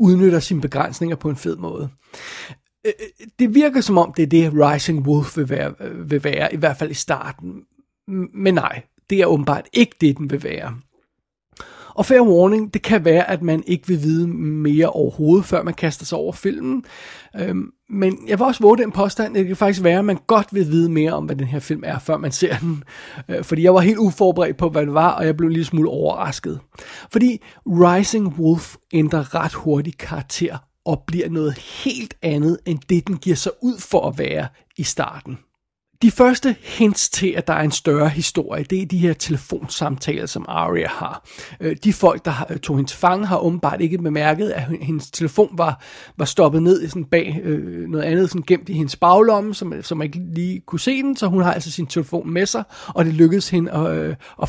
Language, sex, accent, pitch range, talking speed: Danish, male, native, 155-190 Hz, 200 wpm